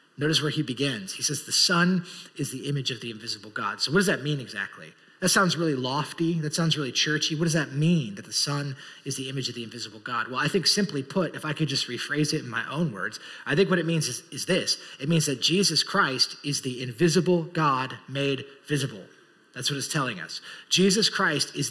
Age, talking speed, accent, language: 30-49, 235 wpm, American, English